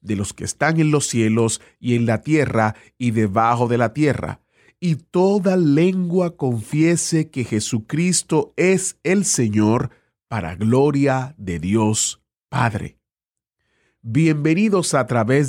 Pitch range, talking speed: 115-160 Hz, 130 wpm